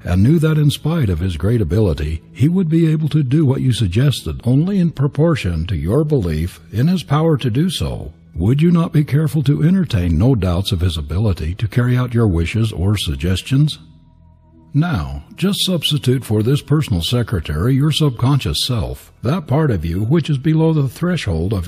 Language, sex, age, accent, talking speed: English, male, 60-79, American, 190 wpm